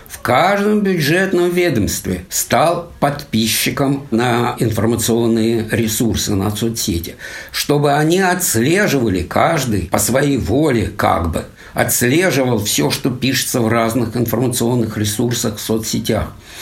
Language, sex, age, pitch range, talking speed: Russian, male, 60-79, 100-135 Hz, 110 wpm